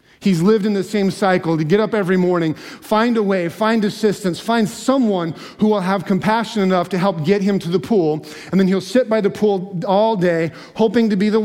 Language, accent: English, American